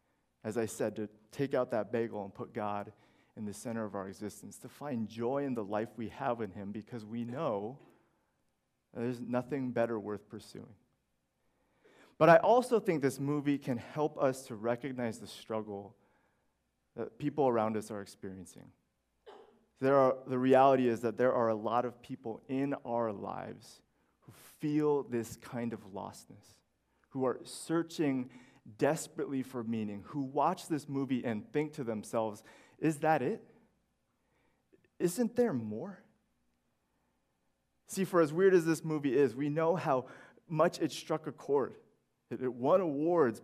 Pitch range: 110-145 Hz